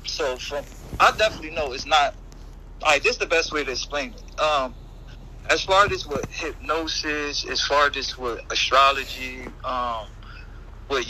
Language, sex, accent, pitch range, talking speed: English, male, American, 110-140 Hz, 160 wpm